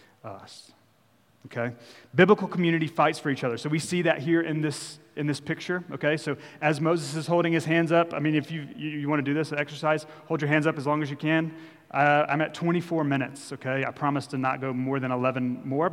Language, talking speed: English, 235 wpm